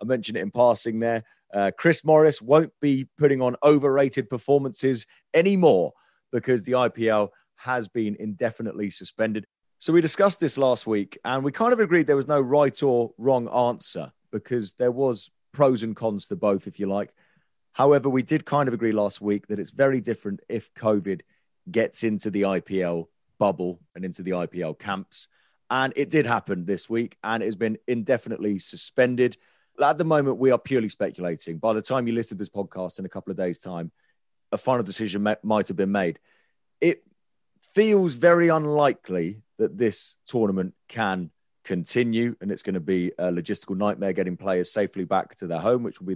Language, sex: English, male